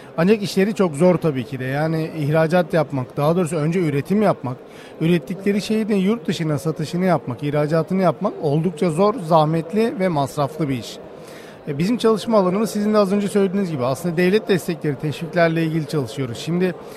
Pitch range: 150-200 Hz